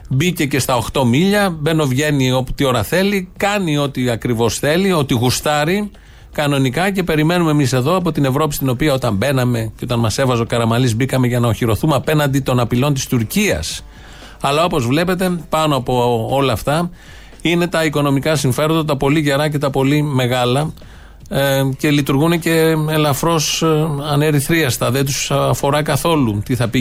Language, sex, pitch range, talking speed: Greek, male, 125-155 Hz, 165 wpm